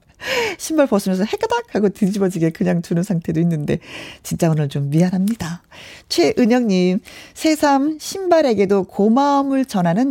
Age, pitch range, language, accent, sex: 40-59, 170-245 Hz, Korean, native, female